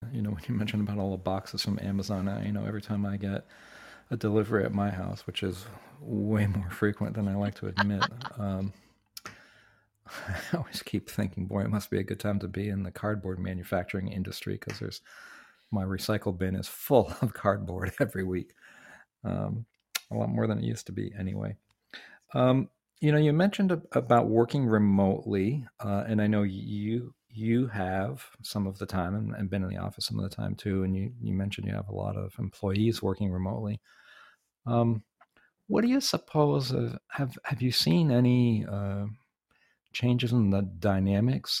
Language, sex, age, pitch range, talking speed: English, male, 40-59, 100-115 Hz, 190 wpm